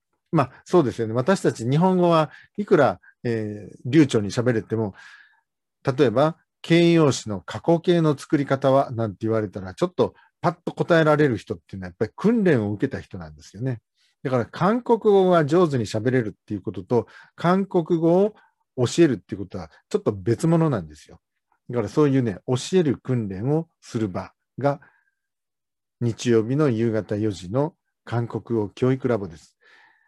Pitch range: 110-165 Hz